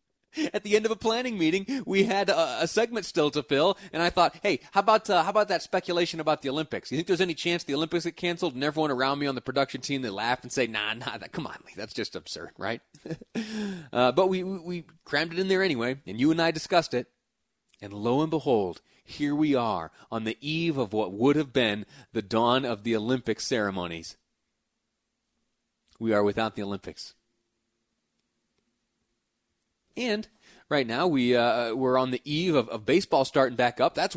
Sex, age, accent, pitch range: male, 30-49, American, 120-170 Hz